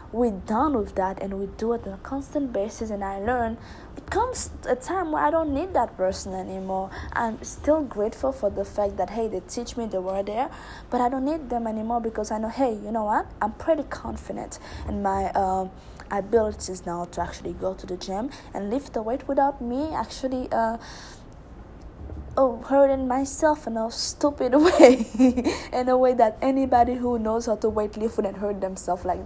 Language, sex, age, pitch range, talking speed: English, female, 20-39, 195-245 Hz, 200 wpm